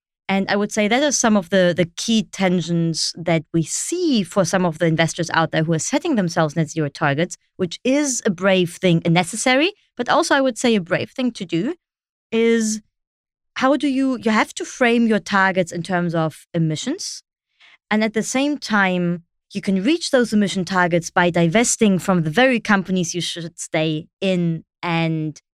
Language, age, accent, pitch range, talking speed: English, 20-39, German, 165-230 Hz, 195 wpm